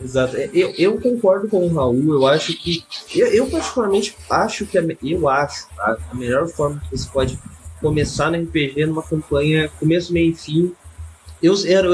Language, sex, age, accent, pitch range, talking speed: Portuguese, male, 20-39, Brazilian, 115-170 Hz, 170 wpm